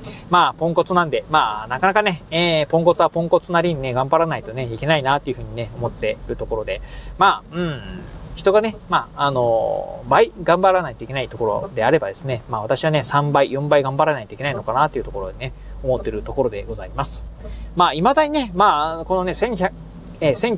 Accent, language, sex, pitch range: native, Japanese, male, 135-190 Hz